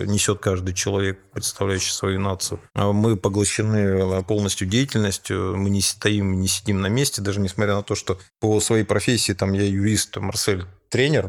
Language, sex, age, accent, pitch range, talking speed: Russian, male, 30-49, native, 95-110 Hz, 160 wpm